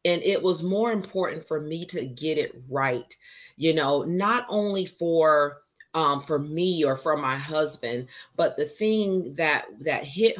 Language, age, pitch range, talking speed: English, 40-59, 125-155 Hz, 165 wpm